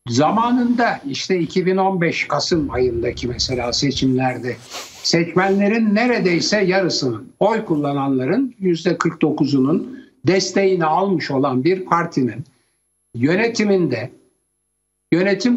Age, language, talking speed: 60-79, Turkish, 75 wpm